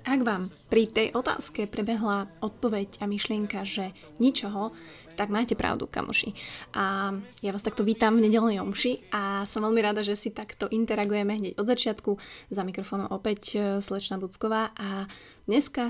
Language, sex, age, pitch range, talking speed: Slovak, female, 20-39, 200-230 Hz, 155 wpm